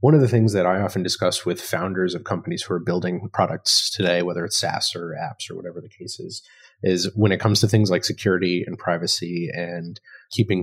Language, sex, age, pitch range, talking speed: English, male, 30-49, 90-110 Hz, 220 wpm